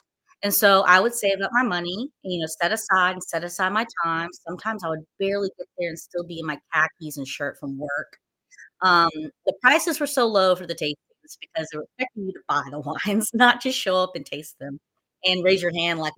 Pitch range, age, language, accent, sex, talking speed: 155-255 Hz, 30-49, English, American, female, 235 wpm